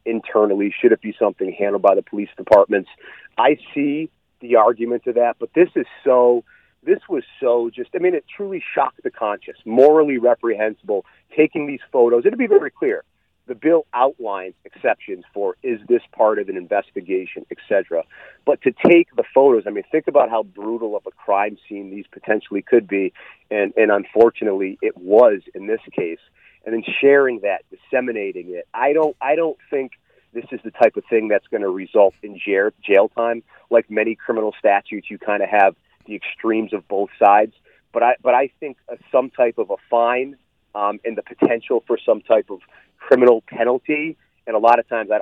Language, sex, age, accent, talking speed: English, male, 40-59, American, 185 wpm